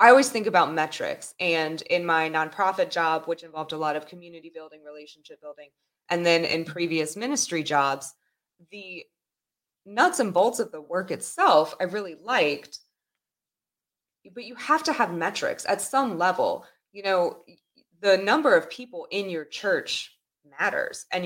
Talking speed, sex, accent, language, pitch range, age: 160 wpm, female, American, English, 155-190 Hz, 20-39